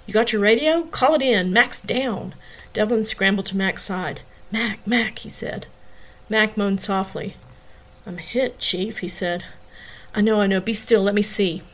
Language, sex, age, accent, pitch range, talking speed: English, female, 40-59, American, 180-215 Hz, 180 wpm